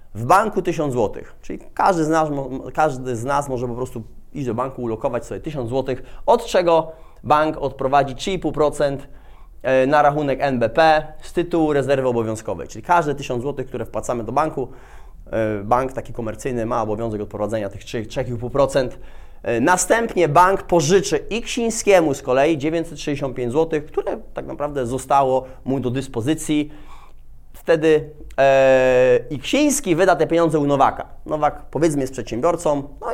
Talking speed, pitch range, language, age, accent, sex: 140 wpm, 125-160 Hz, Polish, 30-49, native, male